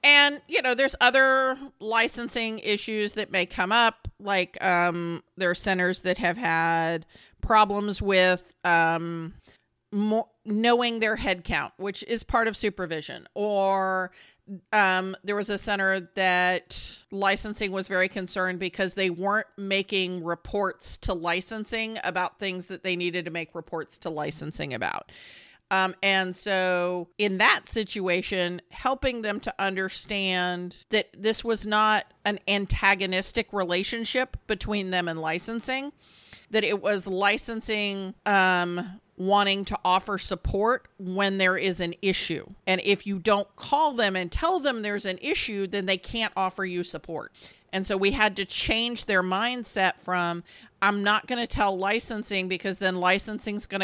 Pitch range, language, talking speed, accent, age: 180-210 Hz, English, 145 wpm, American, 40-59